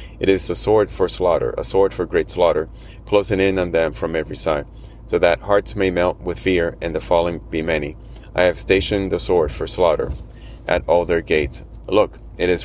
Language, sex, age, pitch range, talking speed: English, male, 30-49, 80-95 Hz, 210 wpm